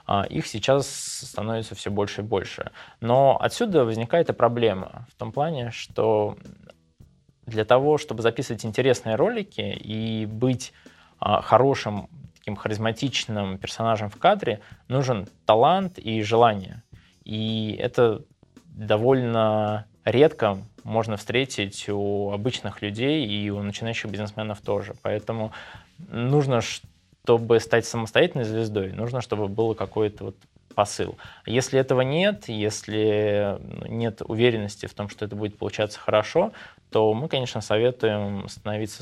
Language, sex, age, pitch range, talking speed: Russian, male, 20-39, 105-120 Hz, 120 wpm